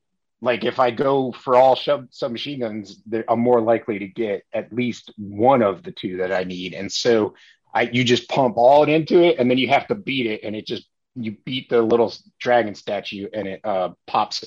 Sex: male